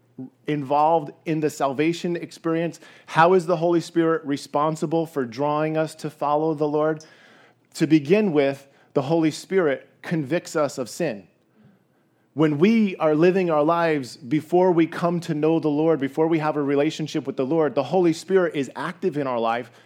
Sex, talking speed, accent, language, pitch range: male, 170 wpm, American, English, 145-175 Hz